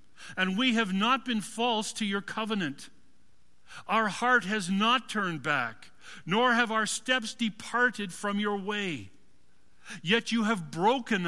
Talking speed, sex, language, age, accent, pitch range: 145 wpm, male, English, 50-69, American, 170-235 Hz